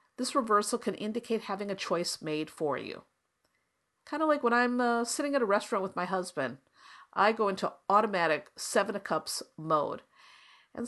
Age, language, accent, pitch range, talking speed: 50-69, English, American, 180-240 Hz, 175 wpm